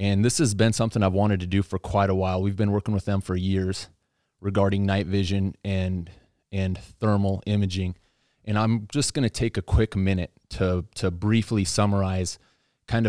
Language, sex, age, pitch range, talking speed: English, male, 20-39, 95-105 Hz, 190 wpm